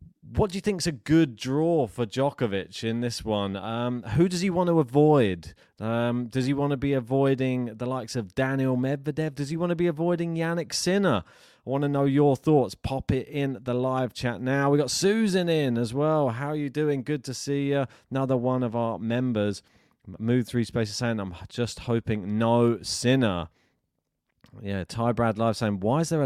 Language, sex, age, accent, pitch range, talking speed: English, male, 30-49, British, 105-140 Hz, 210 wpm